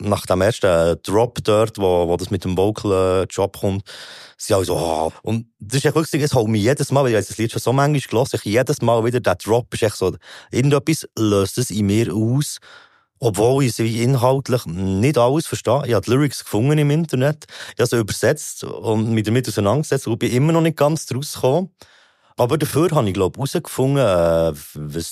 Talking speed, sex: 215 wpm, male